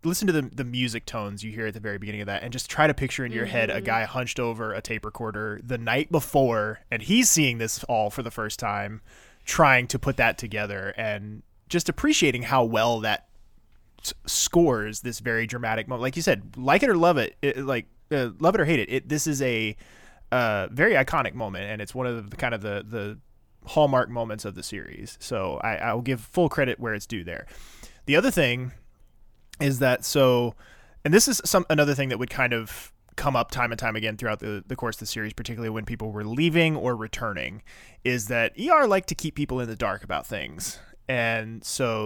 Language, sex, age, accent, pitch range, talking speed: English, male, 20-39, American, 110-140 Hz, 225 wpm